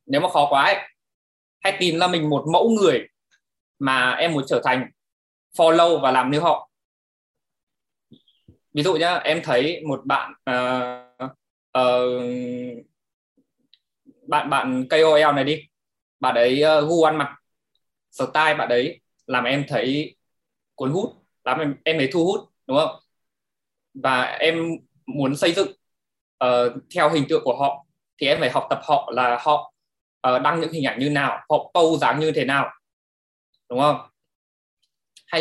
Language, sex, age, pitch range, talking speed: Vietnamese, male, 20-39, 125-160 Hz, 160 wpm